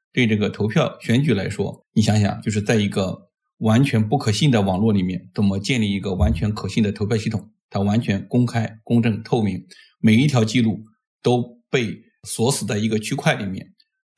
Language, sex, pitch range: Chinese, male, 105-130 Hz